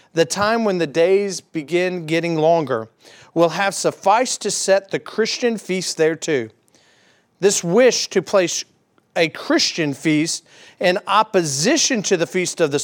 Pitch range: 150-195 Hz